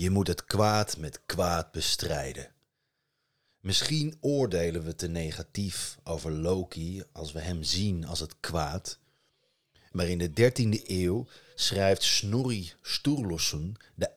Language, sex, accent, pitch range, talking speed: Dutch, male, Dutch, 85-105 Hz, 125 wpm